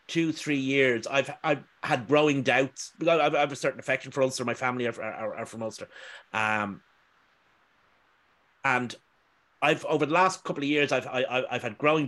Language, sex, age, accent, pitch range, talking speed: English, male, 30-49, Irish, 120-150 Hz, 185 wpm